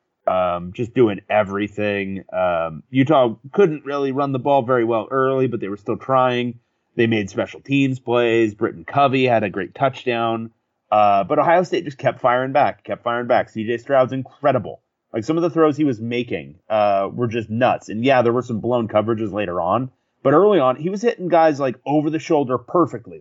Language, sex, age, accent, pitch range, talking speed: English, male, 30-49, American, 110-140 Hz, 200 wpm